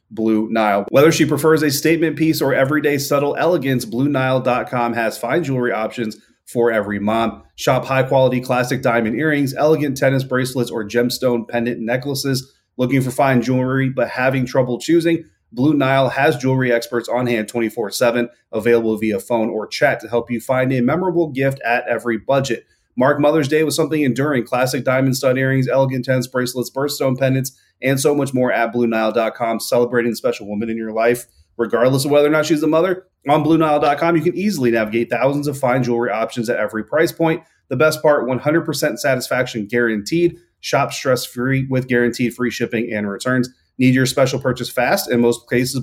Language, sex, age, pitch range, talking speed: English, male, 30-49, 120-140 Hz, 180 wpm